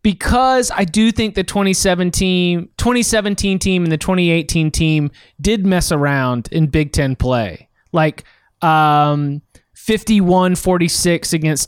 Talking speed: 120 wpm